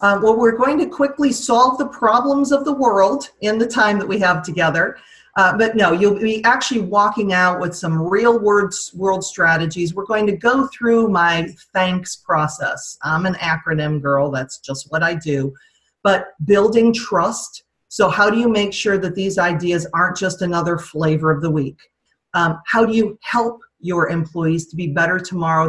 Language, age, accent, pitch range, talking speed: English, 40-59, American, 160-210 Hz, 185 wpm